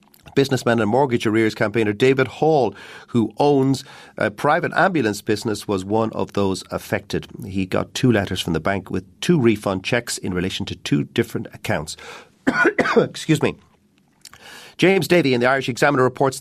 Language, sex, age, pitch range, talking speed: English, male, 40-59, 95-120 Hz, 160 wpm